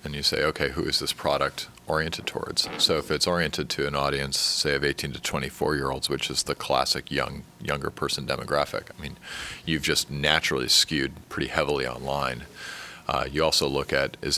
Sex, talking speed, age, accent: male, 195 wpm, 40-59, American